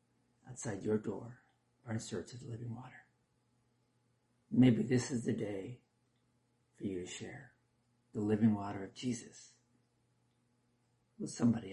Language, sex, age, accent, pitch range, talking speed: English, male, 50-69, American, 115-125 Hz, 135 wpm